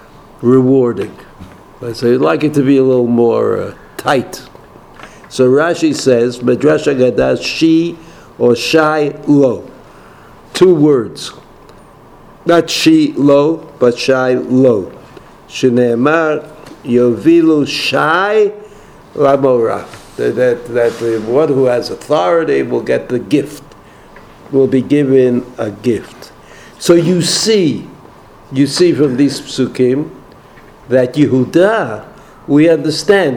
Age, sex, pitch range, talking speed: 60-79, male, 130-165 Hz, 110 wpm